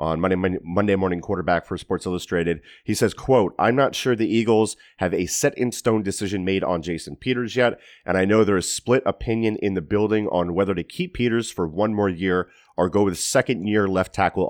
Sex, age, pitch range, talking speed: male, 30-49, 90-105 Hz, 205 wpm